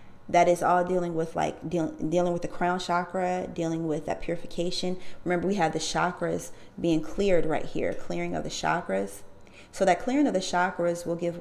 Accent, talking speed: American, 195 wpm